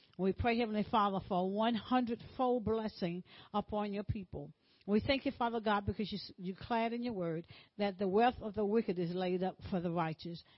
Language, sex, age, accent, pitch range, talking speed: English, female, 60-79, American, 185-235 Hz, 205 wpm